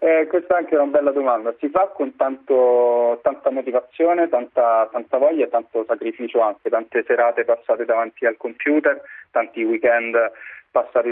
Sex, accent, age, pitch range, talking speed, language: male, native, 20-39, 115-165 Hz, 155 wpm, Italian